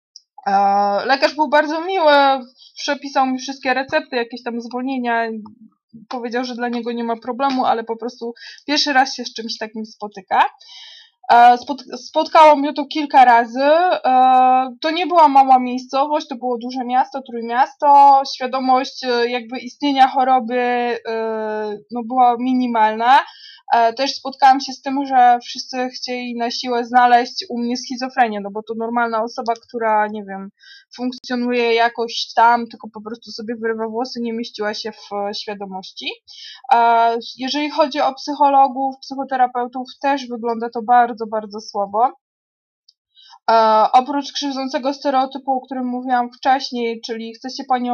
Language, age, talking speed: Polish, 20-39, 135 wpm